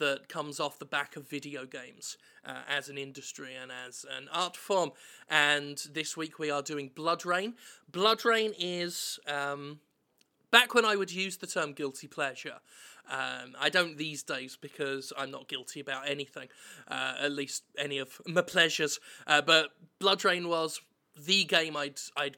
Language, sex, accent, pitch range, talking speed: English, male, British, 140-180 Hz, 175 wpm